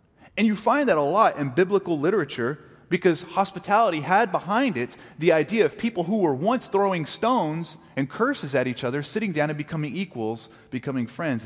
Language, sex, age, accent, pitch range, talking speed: English, male, 30-49, American, 125-170 Hz, 185 wpm